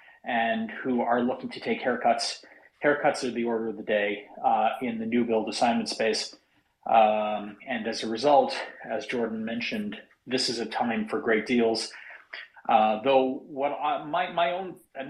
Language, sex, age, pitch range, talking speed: English, male, 30-49, 115-150 Hz, 170 wpm